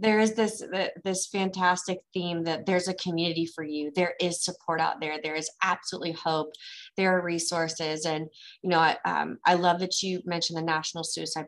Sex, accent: female, American